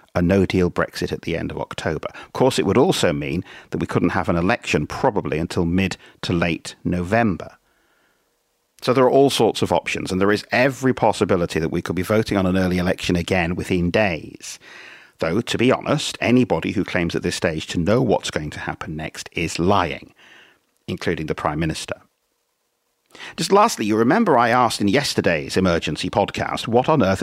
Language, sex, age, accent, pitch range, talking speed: English, male, 50-69, British, 85-105 Hz, 190 wpm